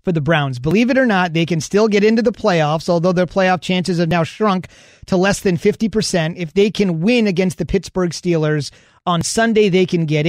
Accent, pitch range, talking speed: American, 155-190 Hz, 220 wpm